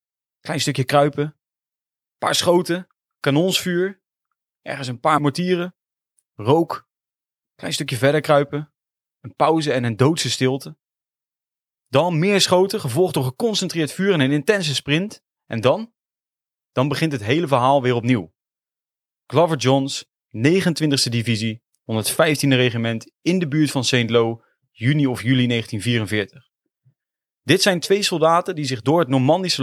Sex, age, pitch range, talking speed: male, 30-49, 130-170 Hz, 135 wpm